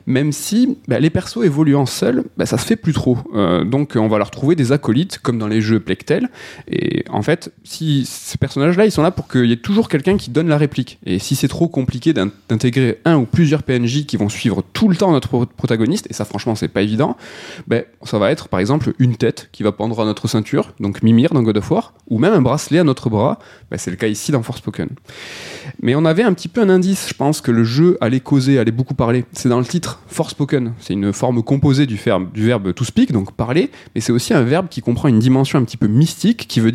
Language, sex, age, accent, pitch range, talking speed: French, male, 20-39, French, 115-155 Hz, 255 wpm